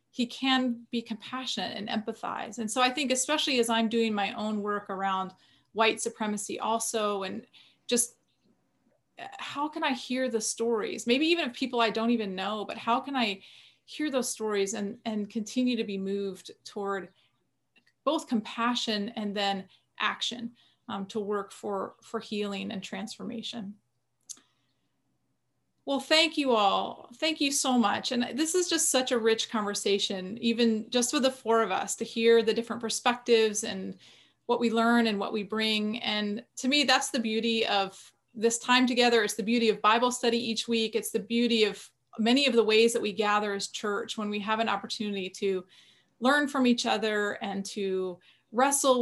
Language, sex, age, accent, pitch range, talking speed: English, female, 30-49, American, 205-245 Hz, 175 wpm